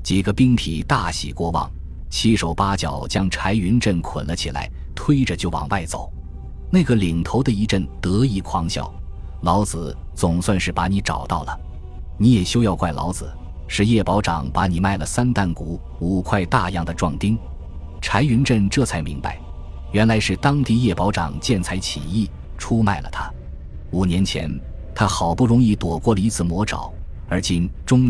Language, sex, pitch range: Chinese, male, 80-105 Hz